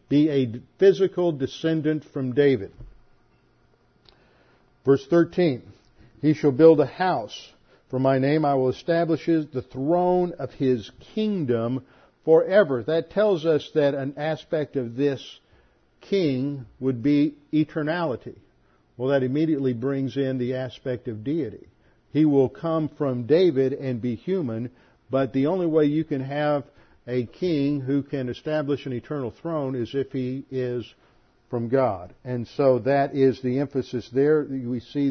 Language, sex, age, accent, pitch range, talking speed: English, male, 50-69, American, 125-155 Hz, 145 wpm